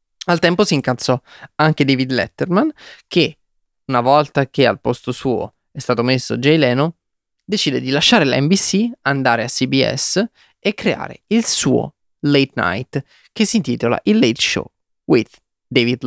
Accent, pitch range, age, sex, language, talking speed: native, 120-150 Hz, 20-39, male, Italian, 155 wpm